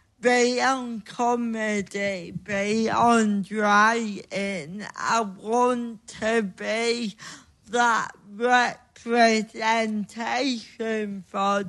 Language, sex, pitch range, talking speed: English, female, 215-245 Hz, 55 wpm